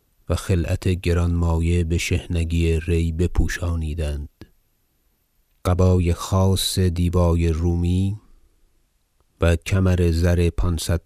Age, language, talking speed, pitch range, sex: 30-49, Persian, 80 wpm, 85-95 Hz, male